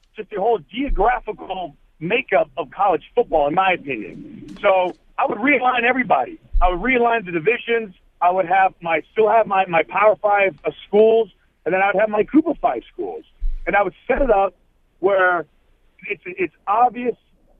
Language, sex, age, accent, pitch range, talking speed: English, male, 40-59, American, 185-240 Hz, 170 wpm